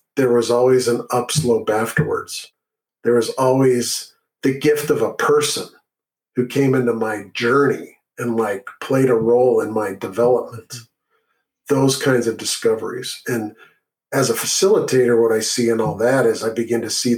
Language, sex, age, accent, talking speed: English, male, 50-69, American, 160 wpm